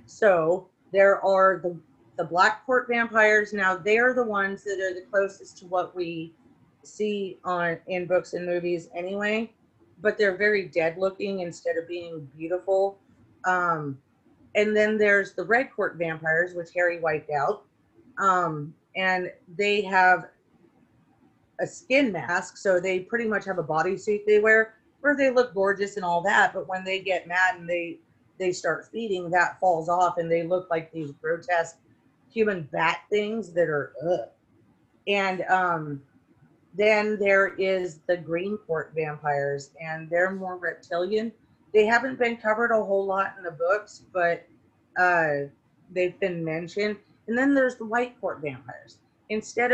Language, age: English, 30-49